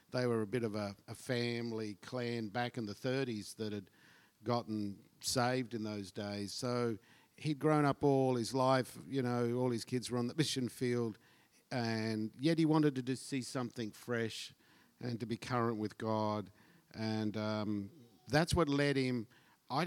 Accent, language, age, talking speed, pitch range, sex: Australian, English, 50-69, 180 wpm, 110-130 Hz, male